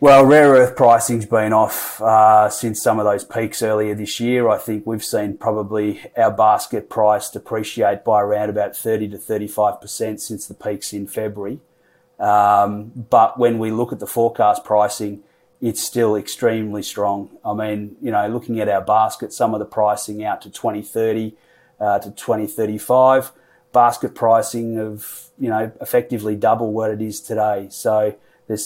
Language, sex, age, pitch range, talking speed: English, male, 30-49, 105-120 Hz, 165 wpm